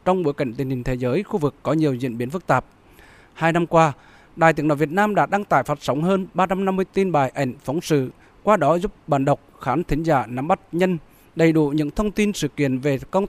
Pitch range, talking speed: 140-185 Hz, 250 wpm